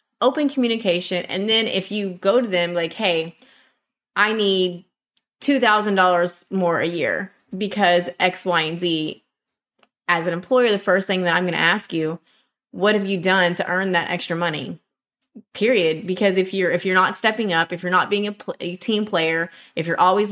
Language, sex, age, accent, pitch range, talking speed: English, female, 20-39, American, 170-200 Hz, 190 wpm